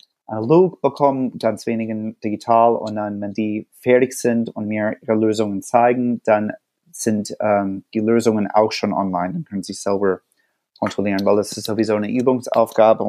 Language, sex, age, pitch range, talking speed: German, male, 30-49, 105-120 Hz, 160 wpm